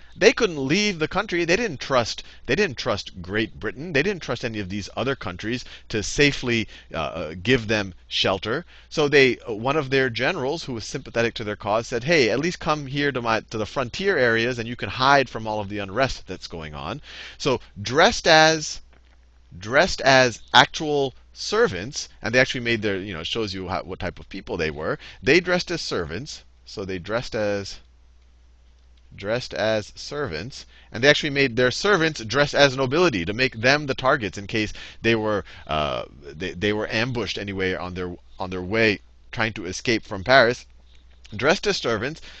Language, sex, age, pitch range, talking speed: English, male, 30-49, 95-145 Hz, 190 wpm